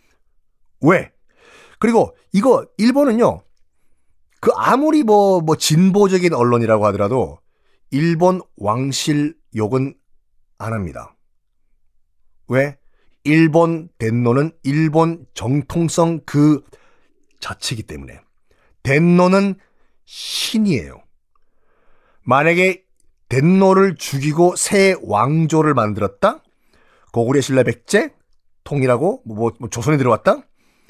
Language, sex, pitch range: Korean, male, 120-175 Hz